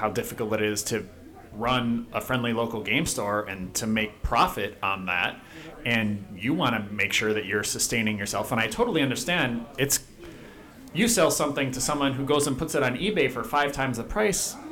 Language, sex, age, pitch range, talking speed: English, male, 30-49, 110-140 Hz, 200 wpm